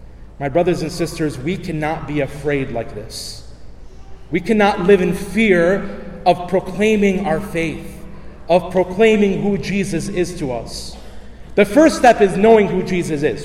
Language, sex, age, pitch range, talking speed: English, male, 30-49, 165-210 Hz, 150 wpm